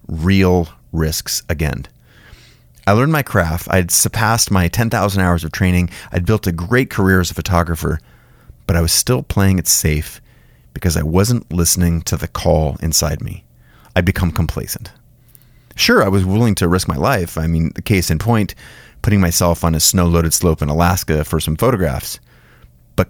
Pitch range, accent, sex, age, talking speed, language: 85-110 Hz, American, male, 30-49, 175 wpm, English